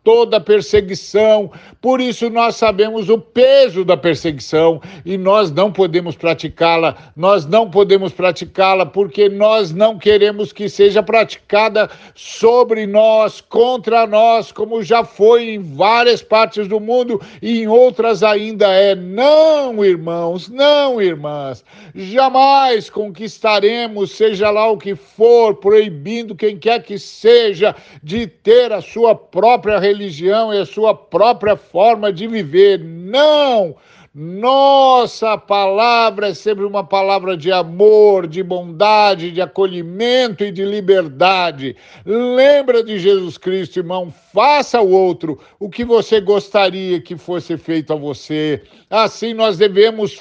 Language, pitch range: Portuguese, 190-225 Hz